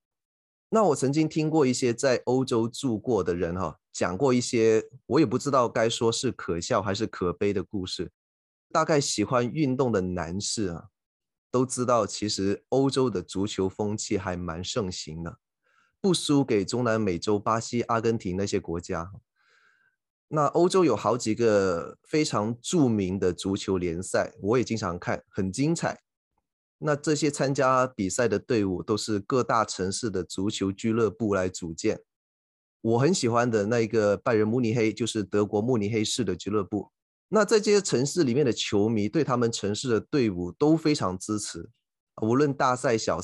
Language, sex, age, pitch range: Chinese, male, 20-39, 100-130 Hz